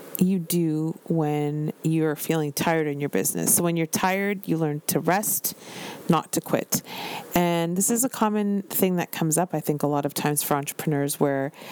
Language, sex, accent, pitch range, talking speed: English, female, American, 150-185 Hz, 195 wpm